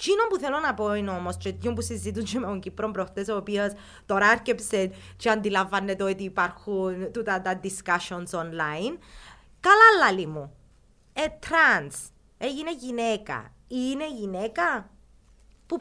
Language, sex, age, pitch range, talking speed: Greek, female, 20-39, 185-245 Hz, 145 wpm